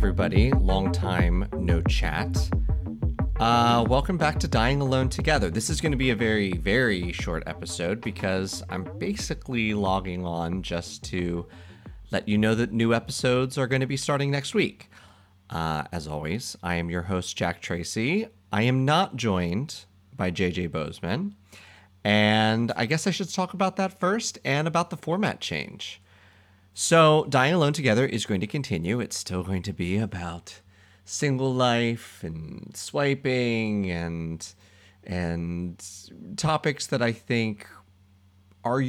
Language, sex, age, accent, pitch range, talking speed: English, male, 30-49, American, 95-130 Hz, 150 wpm